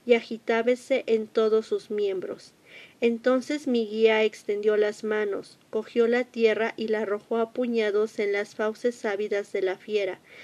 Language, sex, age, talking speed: Spanish, female, 40-59, 155 wpm